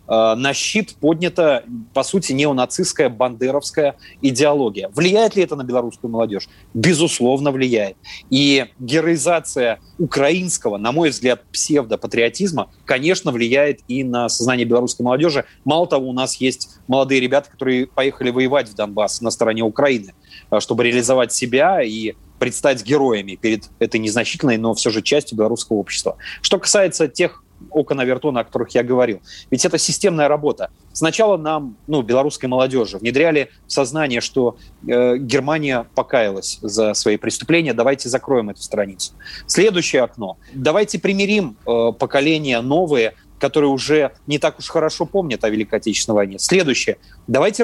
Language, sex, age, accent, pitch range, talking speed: Russian, male, 30-49, native, 120-160 Hz, 140 wpm